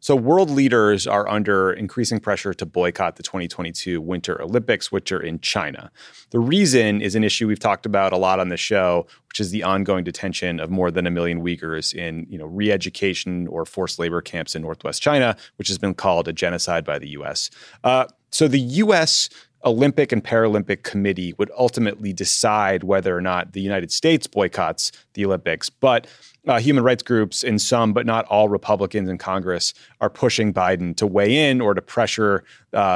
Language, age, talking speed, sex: English, 30-49, 190 wpm, male